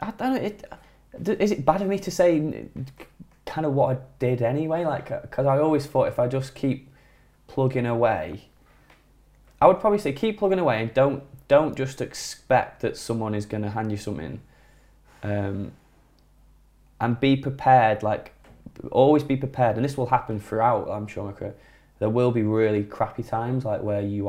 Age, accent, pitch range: 10-29, British, 105-135 Hz